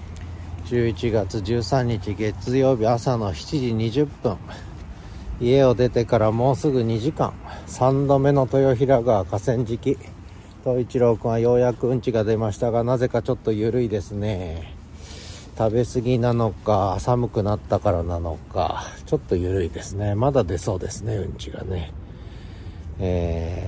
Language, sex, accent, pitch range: Japanese, male, native, 90-120 Hz